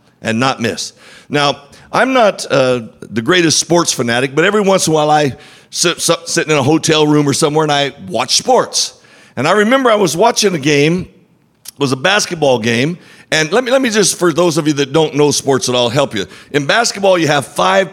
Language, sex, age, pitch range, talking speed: English, male, 50-69, 145-190 Hz, 225 wpm